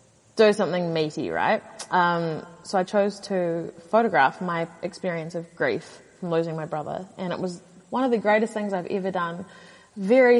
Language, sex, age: English, female, 20-39